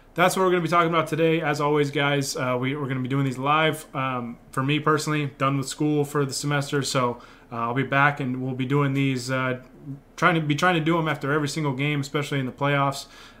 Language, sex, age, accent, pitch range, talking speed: English, male, 20-39, American, 125-150 Hz, 240 wpm